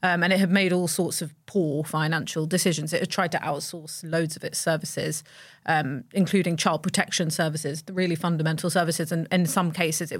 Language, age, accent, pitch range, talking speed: English, 30-49, British, 160-185 Hz, 200 wpm